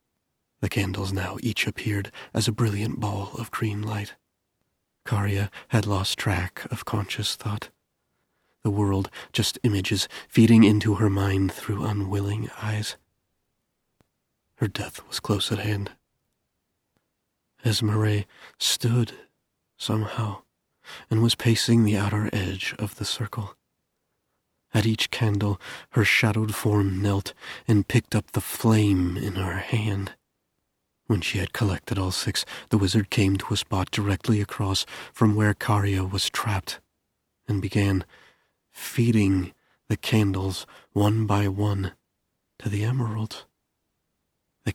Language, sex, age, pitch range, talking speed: English, male, 30-49, 100-110 Hz, 125 wpm